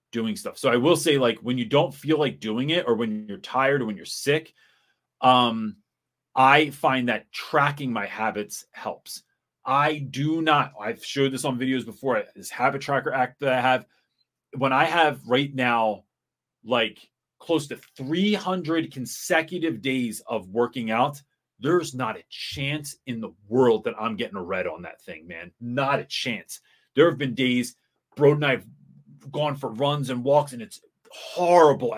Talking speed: 175 wpm